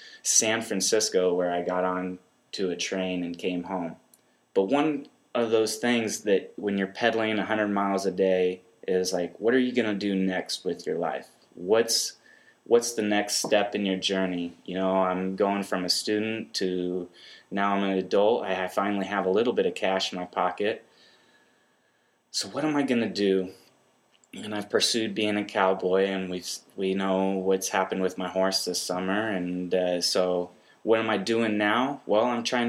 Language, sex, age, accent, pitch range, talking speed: English, male, 20-39, American, 90-105 Hz, 190 wpm